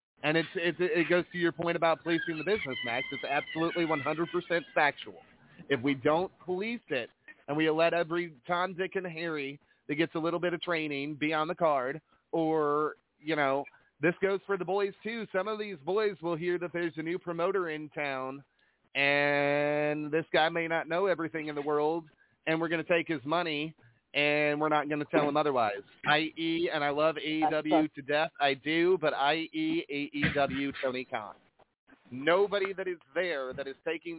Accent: American